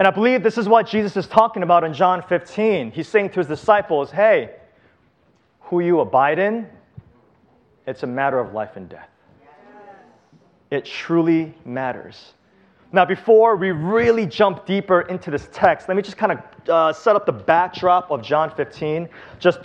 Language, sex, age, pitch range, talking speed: English, male, 30-49, 145-195 Hz, 170 wpm